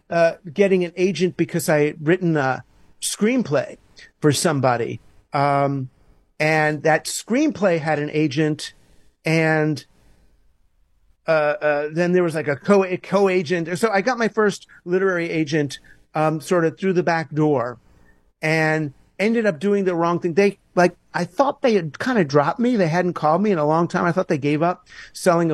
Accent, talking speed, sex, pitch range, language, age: American, 170 wpm, male, 155-200 Hz, English, 50-69